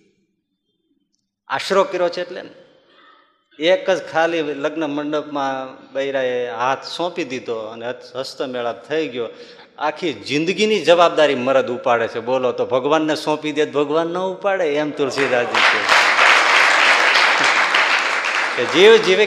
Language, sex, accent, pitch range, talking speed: Gujarati, male, native, 125-180 Hz, 110 wpm